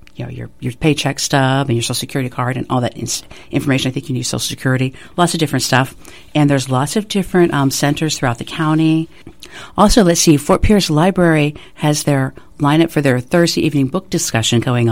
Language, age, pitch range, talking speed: English, 50-69, 130-165 Hz, 215 wpm